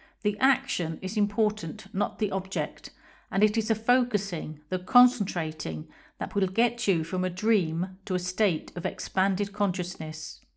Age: 50-69